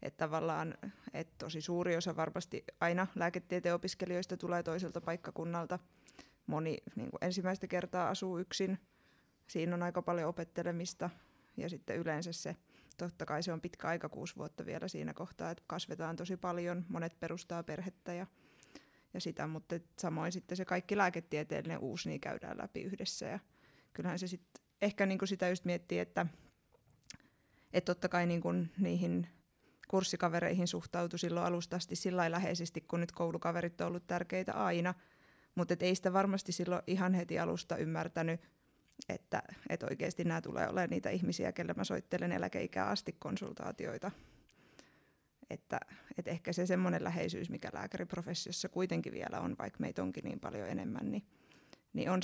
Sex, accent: female, native